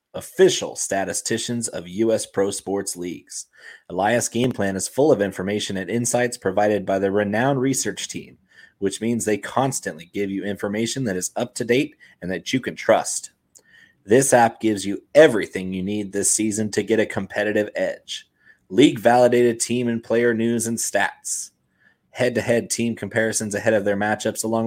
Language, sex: English, male